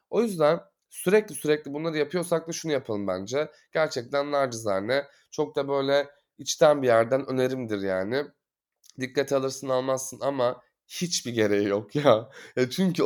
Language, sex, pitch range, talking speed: Turkish, male, 125-170 Hz, 140 wpm